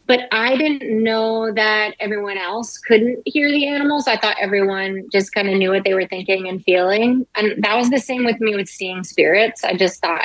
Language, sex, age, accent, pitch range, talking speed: English, female, 30-49, American, 185-230 Hz, 215 wpm